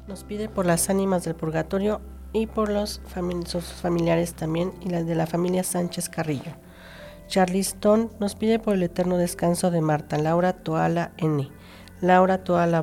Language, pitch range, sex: Spanish, 160-180 Hz, female